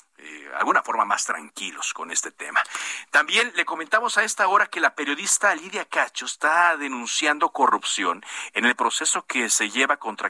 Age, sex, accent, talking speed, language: 50-69, male, Mexican, 165 wpm, Spanish